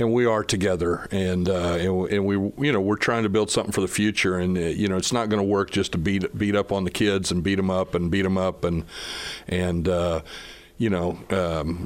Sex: male